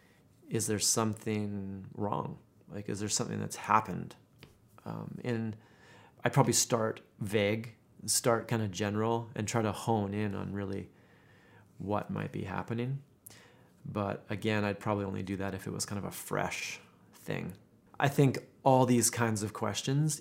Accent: American